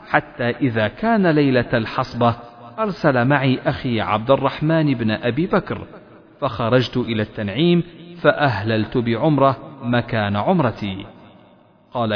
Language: Arabic